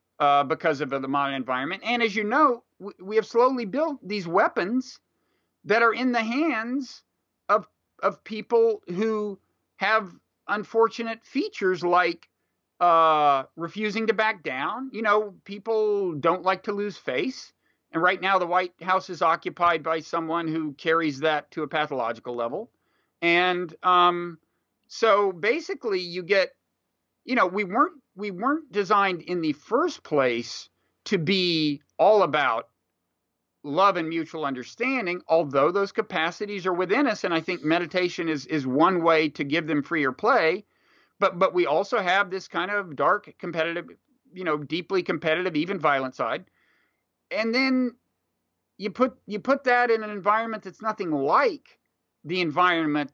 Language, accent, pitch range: English, American, 160-220 Hz